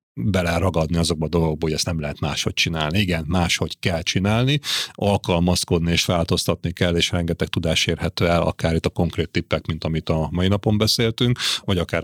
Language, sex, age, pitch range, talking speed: Hungarian, male, 30-49, 85-105 Hz, 180 wpm